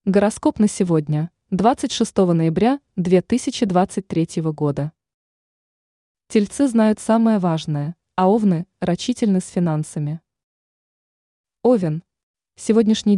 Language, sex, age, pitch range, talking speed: Russian, female, 20-39, 170-220 Hz, 80 wpm